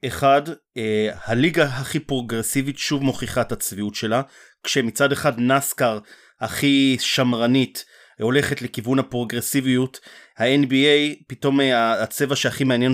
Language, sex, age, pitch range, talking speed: Hebrew, male, 30-49, 120-140 Hz, 100 wpm